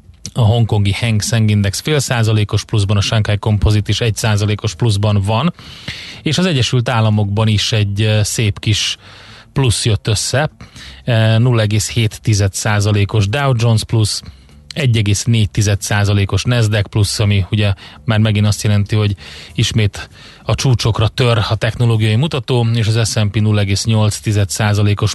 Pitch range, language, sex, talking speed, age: 105-115 Hz, Hungarian, male, 125 wpm, 30-49